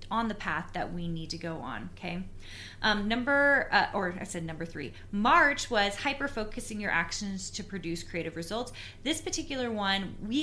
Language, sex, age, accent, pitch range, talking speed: English, female, 30-49, American, 170-225 Hz, 185 wpm